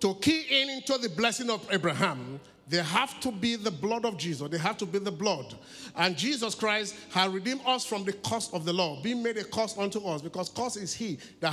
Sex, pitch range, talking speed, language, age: male, 185-240 Hz, 235 wpm, English, 50-69